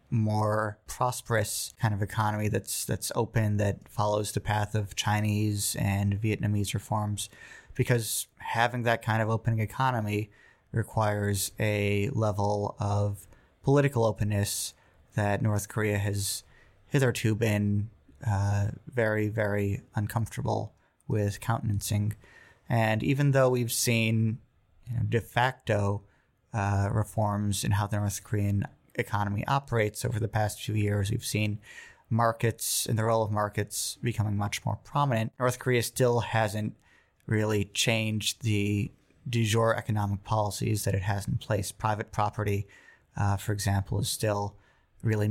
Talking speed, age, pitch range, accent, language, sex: 135 wpm, 20-39, 100-115 Hz, American, English, male